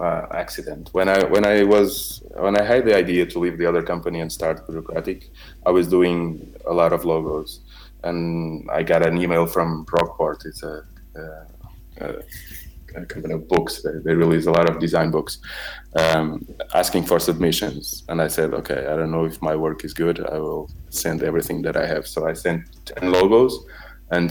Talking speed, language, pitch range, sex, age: 195 wpm, Portuguese, 80-90 Hz, male, 20-39